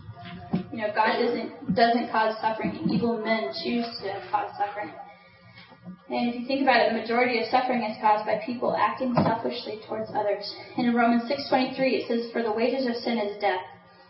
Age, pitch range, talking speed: 10-29, 205-255 Hz, 190 wpm